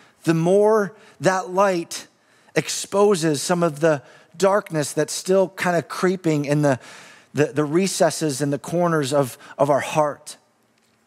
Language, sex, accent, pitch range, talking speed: English, male, American, 165-200 Hz, 140 wpm